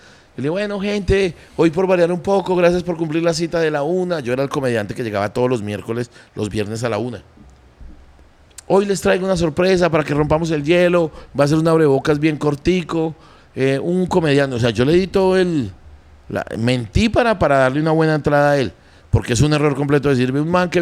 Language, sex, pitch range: Spanish, male, 105-160 Hz